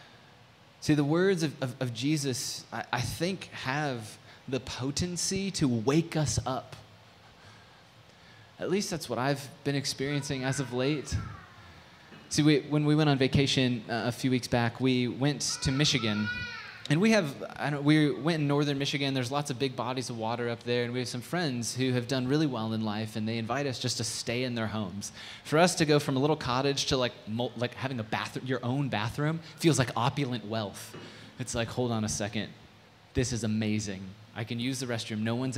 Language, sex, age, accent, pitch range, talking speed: English, male, 20-39, American, 115-150 Hz, 205 wpm